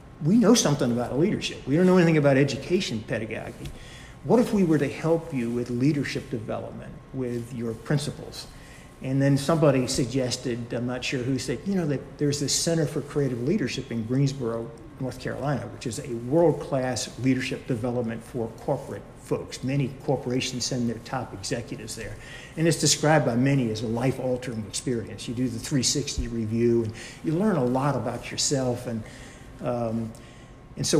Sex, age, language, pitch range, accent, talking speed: male, 50-69, English, 120-140 Hz, American, 170 wpm